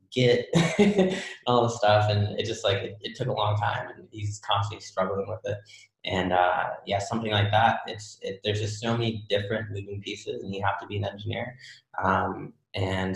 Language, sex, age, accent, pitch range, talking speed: English, male, 20-39, American, 95-110 Hz, 200 wpm